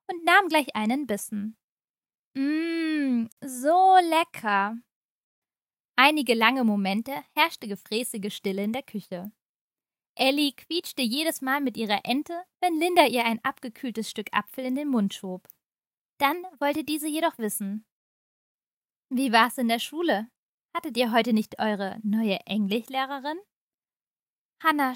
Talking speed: 125 wpm